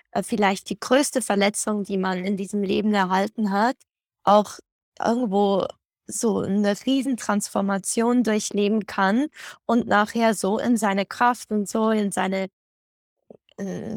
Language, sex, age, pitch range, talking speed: German, female, 20-39, 205-240 Hz, 125 wpm